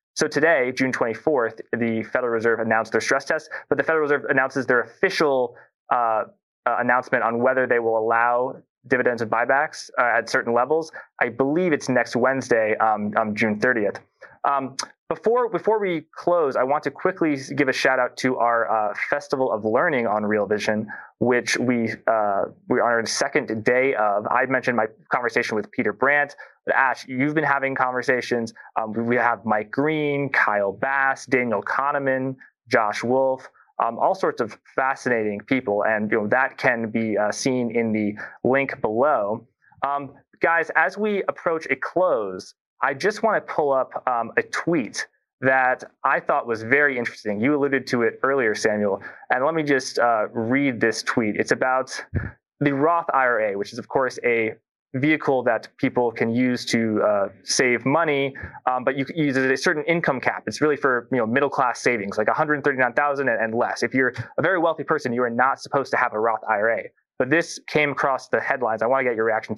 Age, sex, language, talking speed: 20-39, male, English, 195 wpm